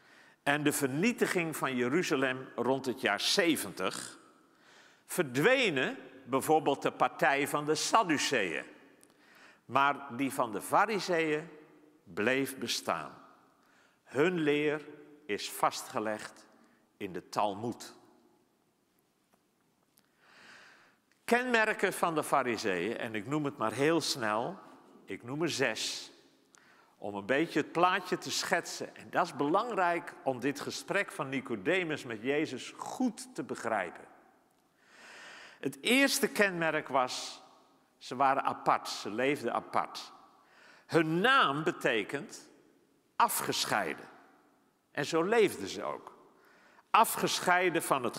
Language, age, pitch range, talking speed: Dutch, 50-69, 130-180 Hz, 110 wpm